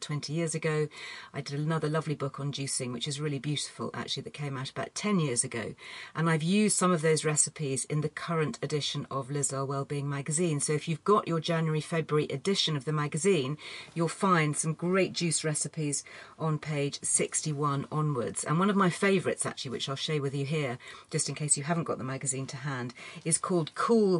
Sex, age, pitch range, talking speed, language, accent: female, 40-59, 145-175 Hz, 205 wpm, English, British